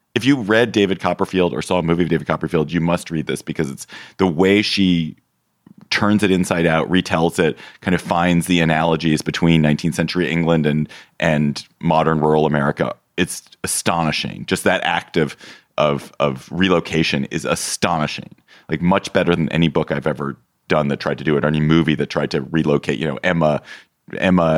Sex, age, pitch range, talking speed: male, 30-49, 75-90 Hz, 190 wpm